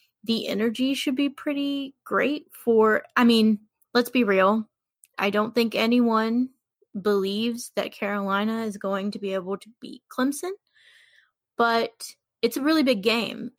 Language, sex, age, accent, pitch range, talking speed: English, female, 20-39, American, 205-260 Hz, 145 wpm